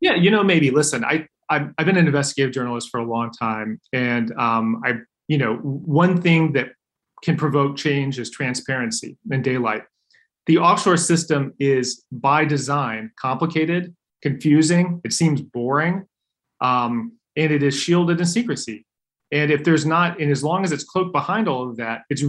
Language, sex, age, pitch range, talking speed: English, male, 30-49, 120-155 Hz, 170 wpm